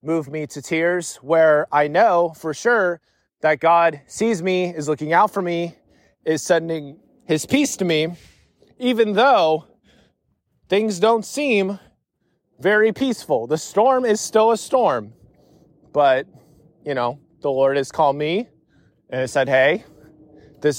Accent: American